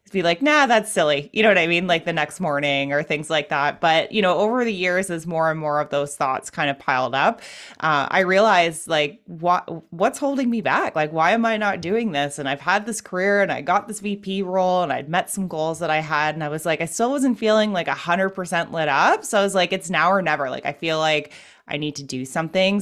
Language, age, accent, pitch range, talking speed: English, 20-39, American, 160-215 Hz, 265 wpm